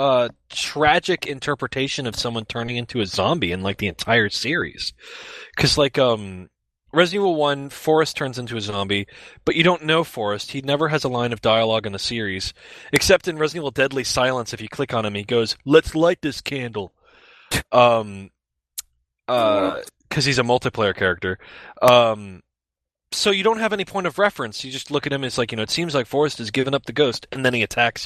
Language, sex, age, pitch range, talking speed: English, male, 20-39, 115-150 Hz, 205 wpm